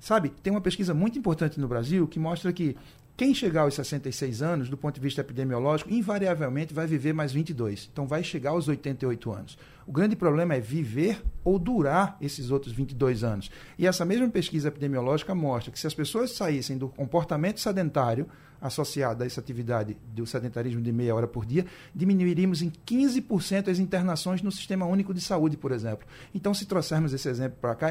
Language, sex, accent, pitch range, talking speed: Portuguese, male, Brazilian, 135-185 Hz, 185 wpm